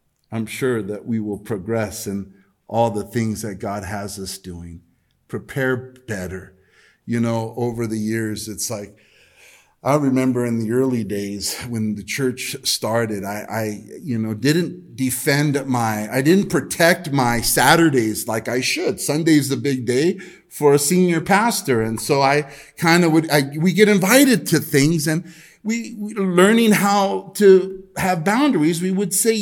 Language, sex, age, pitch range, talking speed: English, male, 50-69, 110-170 Hz, 160 wpm